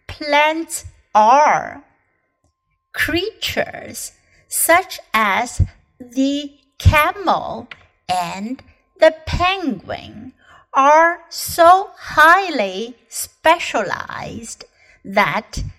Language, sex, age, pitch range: Chinese, female, 60-79, 210-310 Hz